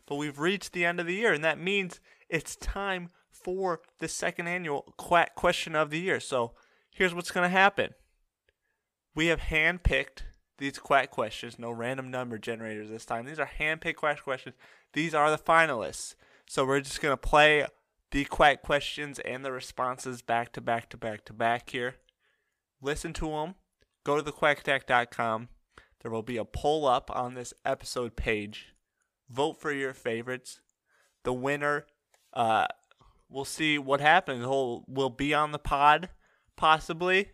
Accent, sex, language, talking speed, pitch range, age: American, male, English, 160 wpm, 125-155 Hz, 20-39